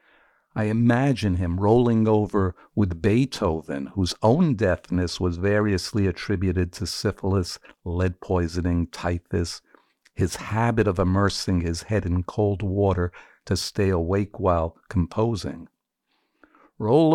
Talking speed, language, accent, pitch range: 115 wpm, English, American, 95-155 Hz